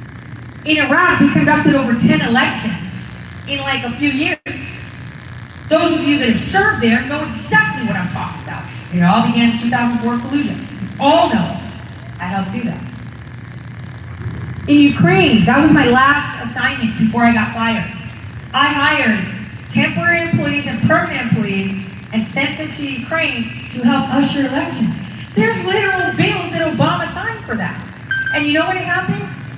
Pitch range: 175-275 Hz